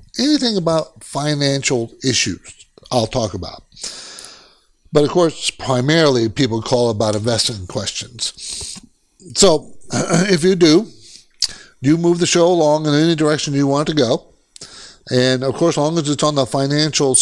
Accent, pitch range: American, 125-155 Hz